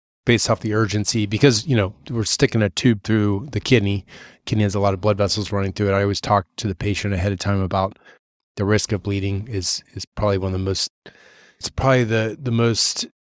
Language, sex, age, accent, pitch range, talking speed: English, male, 20-39, American, 100-115 Hz, 225 wpm